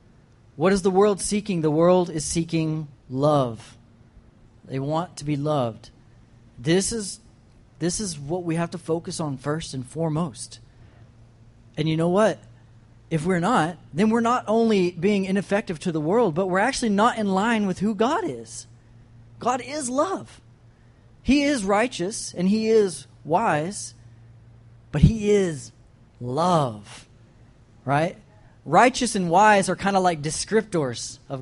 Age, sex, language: 30-49, male, English